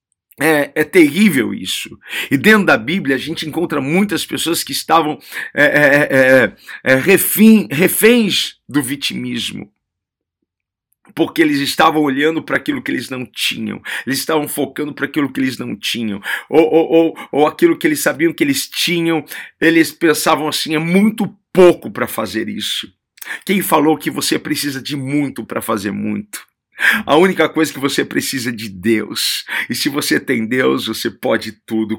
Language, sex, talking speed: Portuguese, male, 155 wpm